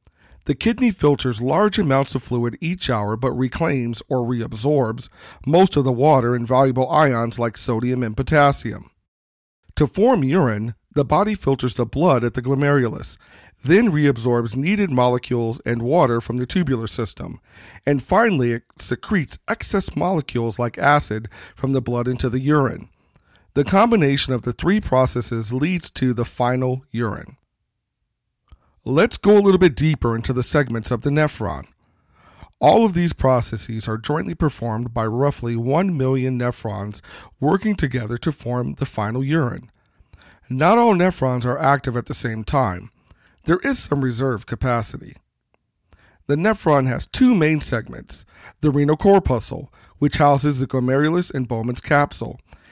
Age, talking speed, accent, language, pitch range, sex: 40-59, 150 wpm, American, English, 120-150 Hz, male